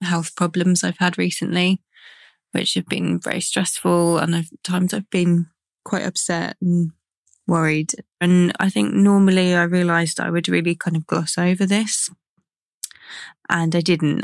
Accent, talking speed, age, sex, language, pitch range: British, 150 wpm, 20-39, female, English, 165-195 Hz